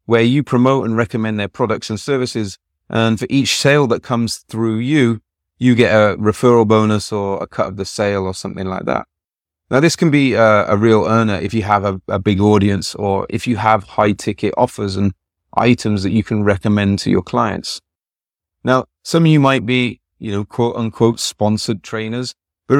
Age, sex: 30-49, male